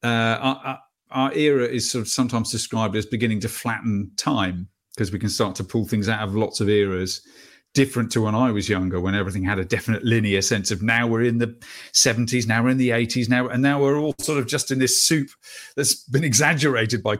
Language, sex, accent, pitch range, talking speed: English, male, British, 110-135 Hz, 230 wpm